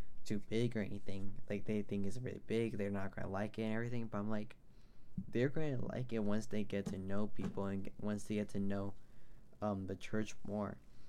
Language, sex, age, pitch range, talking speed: English, male, 10-29, 100-115 Hz, 215 wpm